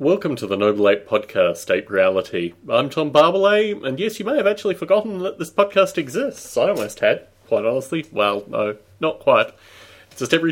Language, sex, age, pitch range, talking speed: English, male, 30-49, 115-170 Hz, 195 wpm